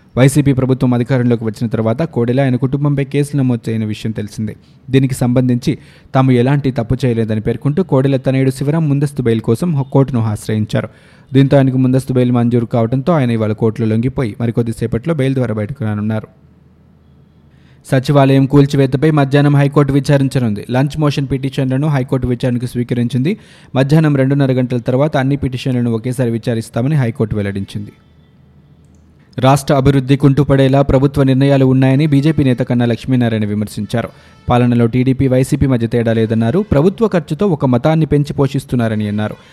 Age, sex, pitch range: 20-39, male, 115-140 Hz